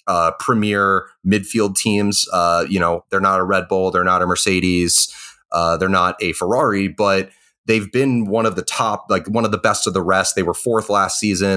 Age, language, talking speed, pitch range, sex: 30-49, English, 215 wpm, 90-105 Hz, male